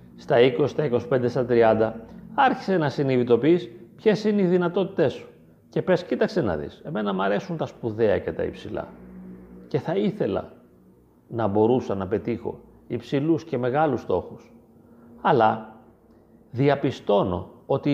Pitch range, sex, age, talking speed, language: 105-145 Hz, male, 40-59, 135 wpm, Greek